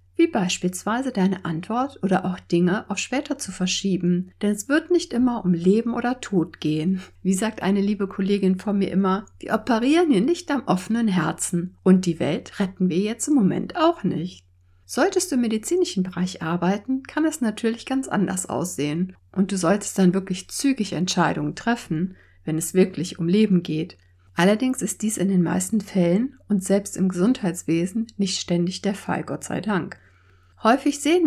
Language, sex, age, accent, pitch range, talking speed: German, female, 60-79, German, 175-220 Hz, 175 wpm